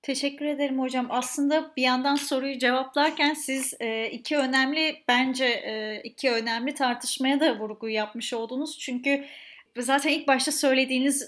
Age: 30-49